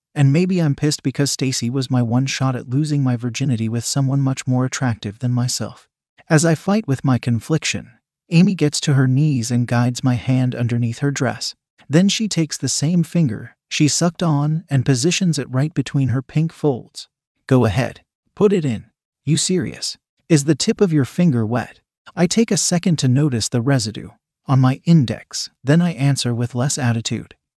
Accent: American